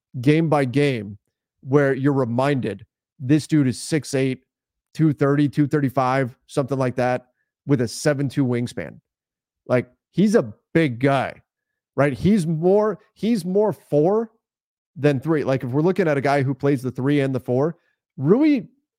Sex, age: male, 30-49